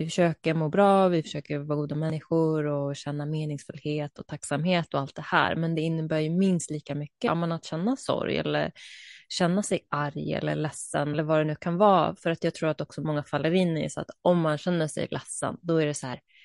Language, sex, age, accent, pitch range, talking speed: Swedish, female, 20-39, native, 150-180 Hz, 240 wpm